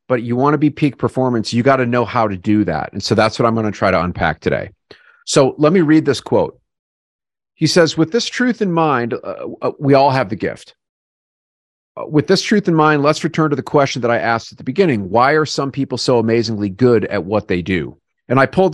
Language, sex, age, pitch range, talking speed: English, male, 40-59, 105-135 Hz, 245 wpm